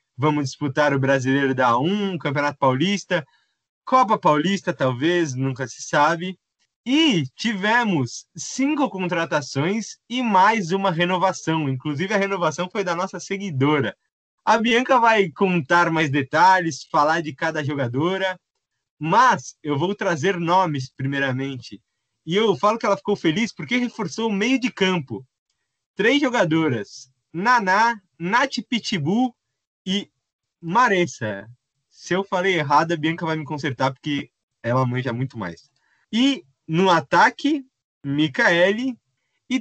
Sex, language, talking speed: male, Portuguese, 125 wpm